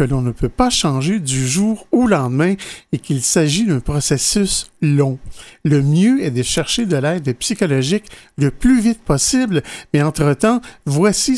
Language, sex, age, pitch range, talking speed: French, male, 50-69, 140-195 Hz, 165 wpm